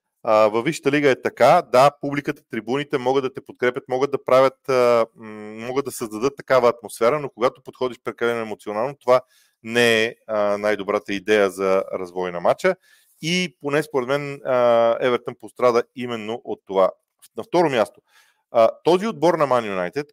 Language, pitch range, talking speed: Bulgarian, 105-135 Hz, 150 wpm